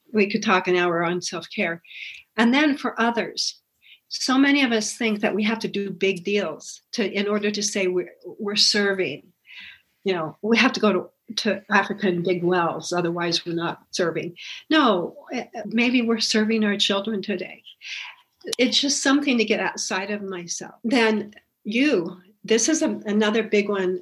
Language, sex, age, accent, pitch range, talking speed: English, female, 60-79, American, 190-225 Hz, 175 wpm